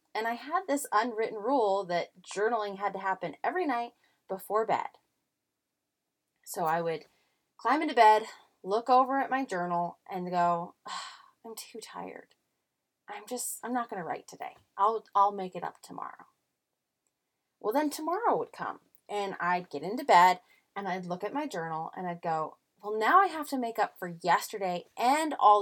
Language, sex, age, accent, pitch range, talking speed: English, female, 30-49, American, 185-270 Hz, 175 wpm